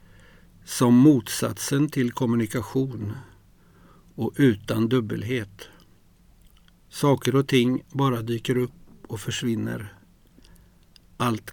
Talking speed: 85 wpm